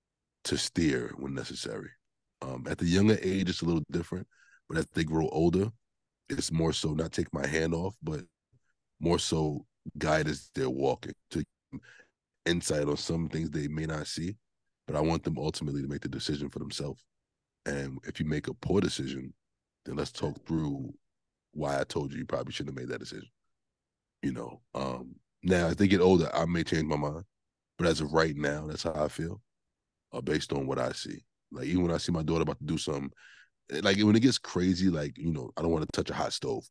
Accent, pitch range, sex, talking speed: American, 75-90 Hz, male, 210 wpm